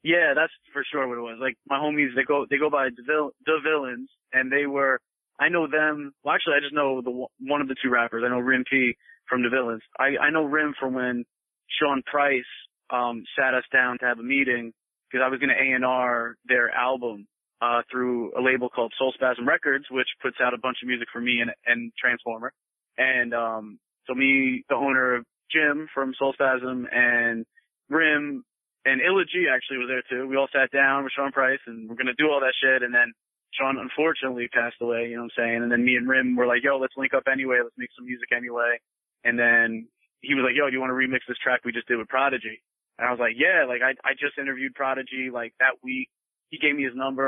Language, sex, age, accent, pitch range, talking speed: English, male, 20-39, American, 120-140 Hz, 235 wpm